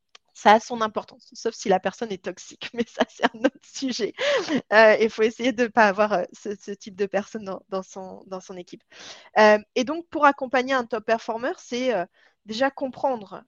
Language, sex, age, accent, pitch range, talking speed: French, female, 20-39, French, 195-235 Hz, 200 wpm